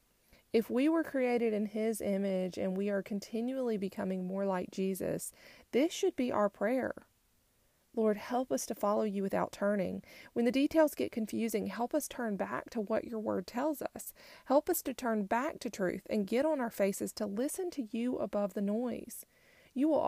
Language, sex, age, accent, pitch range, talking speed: English, female, 30-49, American, 190-240 Hz, 190 wpm